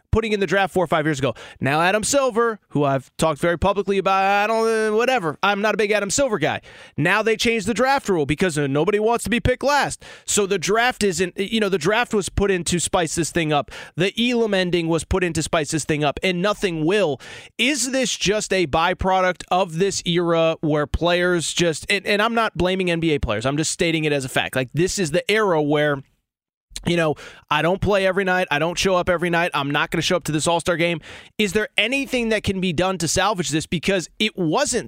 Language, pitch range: English, 160-200 Hz